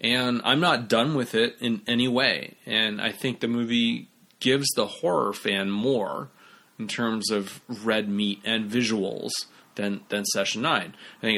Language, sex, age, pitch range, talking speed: English, male, 30-49, 110-140 Hz, 170 wpm